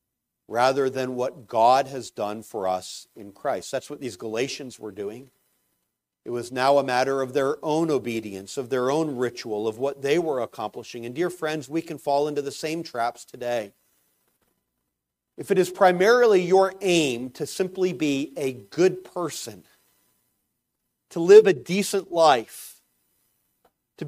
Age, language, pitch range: 40-59, English, 115-165 Hz